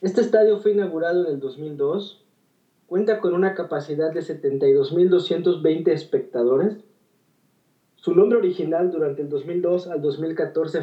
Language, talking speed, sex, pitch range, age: Spanish, 120 wpm, male, 155-195 Hz, 30-49